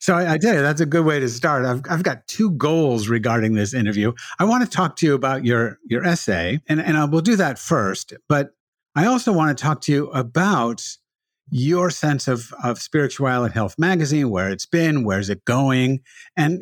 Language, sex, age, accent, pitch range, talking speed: English, male, 50-69, American, 115-165 Hz, 215 wpm